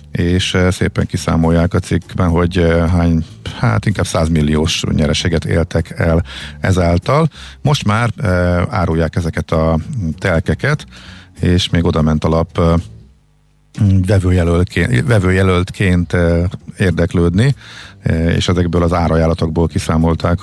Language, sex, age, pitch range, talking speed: Hungarian, male, 50-69, 80-95 Hz, 100 wpm